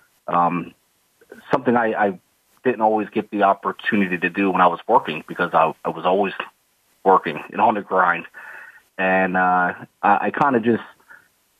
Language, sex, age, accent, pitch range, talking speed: English, male, 30-49, American, 90-105 Hz, 160 wpm